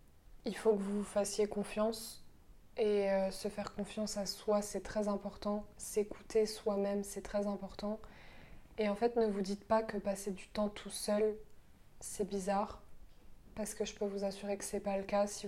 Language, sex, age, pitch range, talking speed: French, female, 20-39, 200-215 Hz, 190 wpm